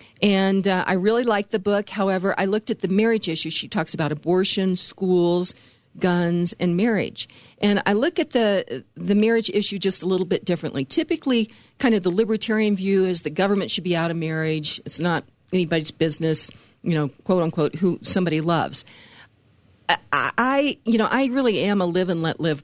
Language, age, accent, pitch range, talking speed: English, 50-69, American, 160-205 Hz, 190 wpm